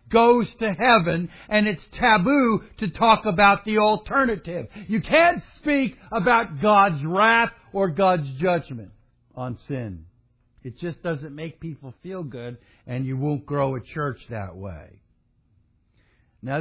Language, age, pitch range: English, 60-79, 125-215 Hz